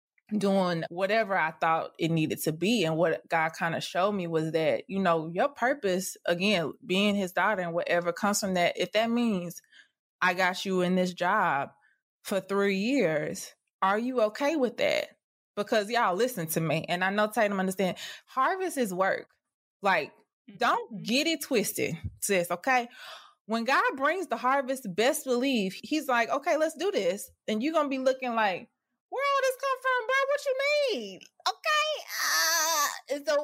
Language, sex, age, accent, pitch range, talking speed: English, female, 20-39, American, 180-265 Hz, 180 wpm